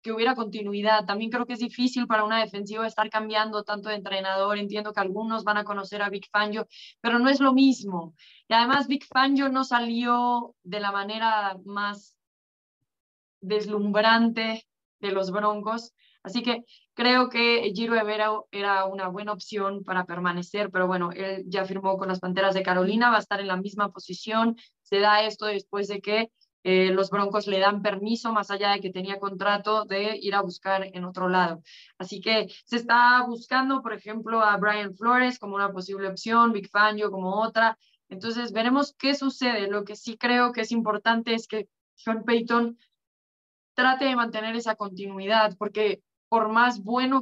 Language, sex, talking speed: English, female, 180 wpm